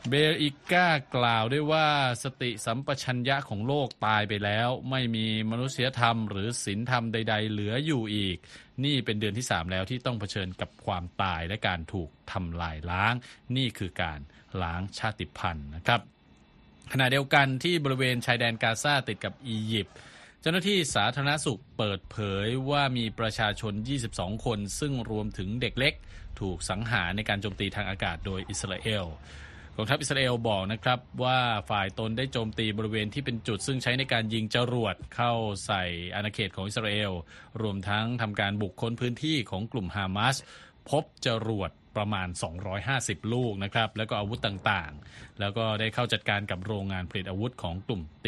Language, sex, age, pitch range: Thai, male, 20-39, 100-125 Hz